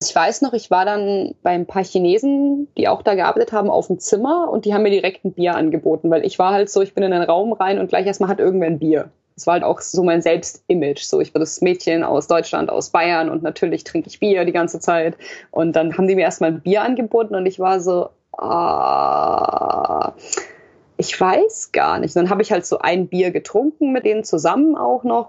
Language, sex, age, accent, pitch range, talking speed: German, female, 20-39, German, 175-225 Hz, 235 wpm